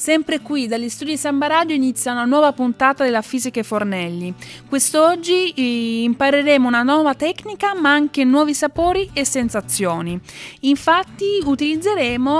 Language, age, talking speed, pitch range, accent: Italian, 20-39, 130 wpm, 225-310 Hz, native